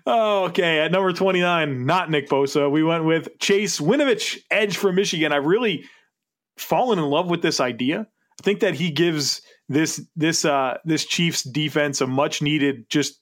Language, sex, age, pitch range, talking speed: English, male, 30-49, 135-160 Hz, 170 wpm